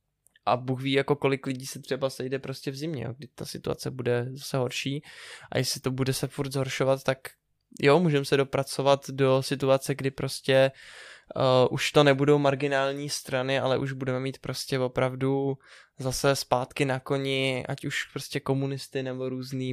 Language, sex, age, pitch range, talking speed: Czech, male, 20-39, 130-145 Hz, 165 wpm